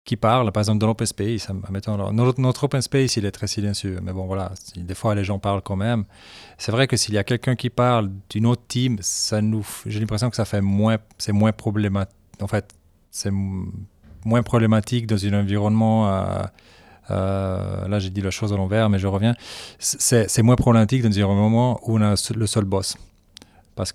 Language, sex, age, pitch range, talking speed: French, male, 40-59, 100-115 Hz, 205 wpm